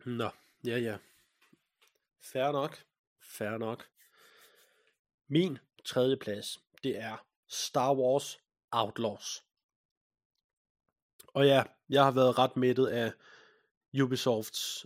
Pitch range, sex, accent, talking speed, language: 125-150 Hz, male, native, 95 wpm, Danish